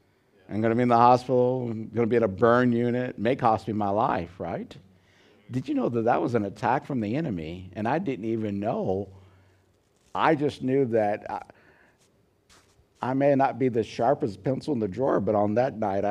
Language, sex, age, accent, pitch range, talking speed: English, male, 60-79, American, 100-130 Hz, 210 wpm